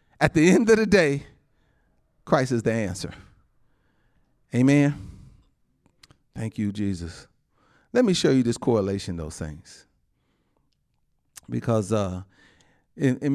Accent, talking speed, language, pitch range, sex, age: American, 115 wpm, English, 105-155 Hz, male, 40-59